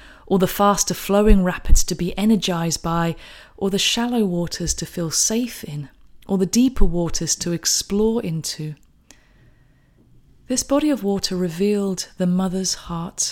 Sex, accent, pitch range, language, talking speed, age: female, British, 160-200 Hz, English, 140 wpm, 30-49